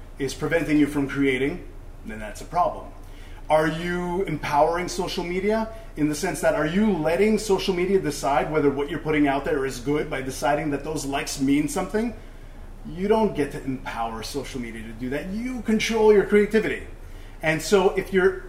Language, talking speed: English, 185 wpm